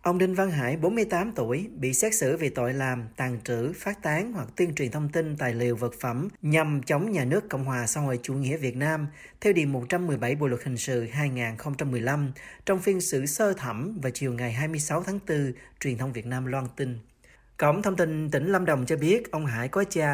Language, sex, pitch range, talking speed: Vietnamese, male, 130-175 Hz, 220 wpm